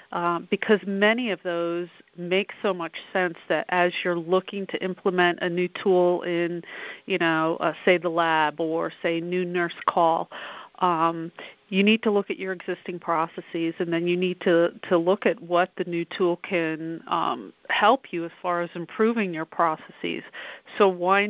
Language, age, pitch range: English, 40-59, 170-195 Hz